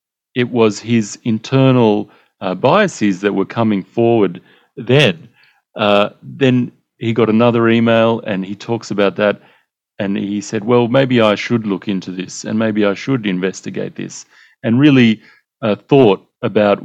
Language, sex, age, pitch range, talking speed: English, male, 40-59, 95-110 Hz, 155 wpm